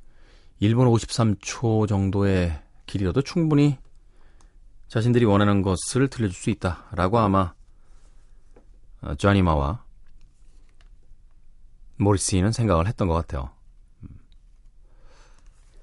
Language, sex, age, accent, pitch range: Korean, male, 40-59, native, 80-115 Hz